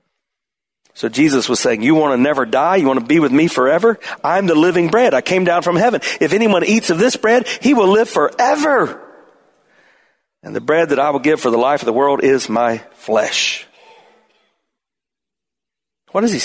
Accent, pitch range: American, 150-225 Hz